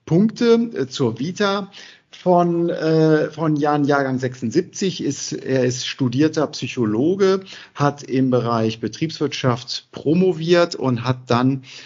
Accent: German